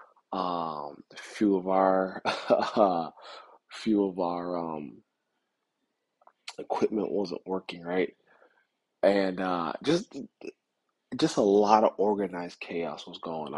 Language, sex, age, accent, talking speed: English, male, 20-39, American, 110 wpm